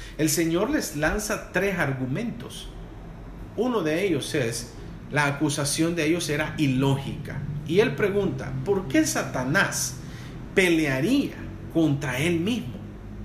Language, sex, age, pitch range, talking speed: English, male, 40-59, 135-175 Hz, 120 wpm